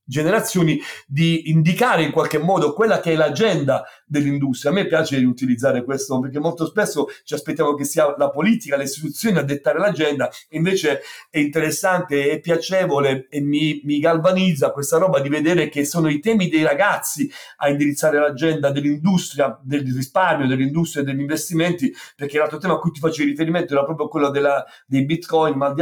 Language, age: Italian, 40-59